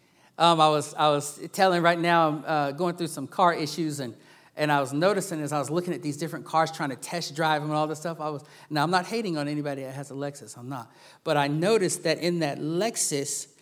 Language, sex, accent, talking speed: English, male, American, 255 wpm